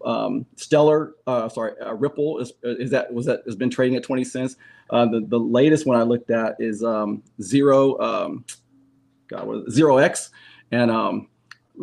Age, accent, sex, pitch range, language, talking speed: 30-49, American, male, 120-155 Hz, English, 180 wpm